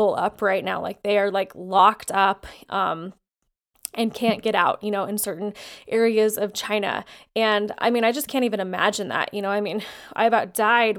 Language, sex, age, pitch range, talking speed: English, female, 20-39, 200-225 Hz, 200 wpm